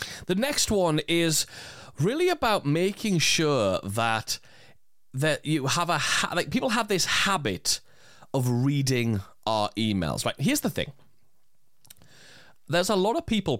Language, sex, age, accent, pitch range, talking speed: English, male, 30-49, British, 115-180 Hz, 140 wpm